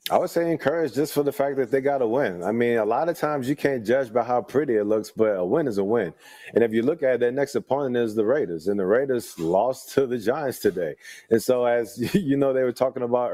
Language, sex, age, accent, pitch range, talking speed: English, male, 30-49, American, 115-135 Hz, 275 wpm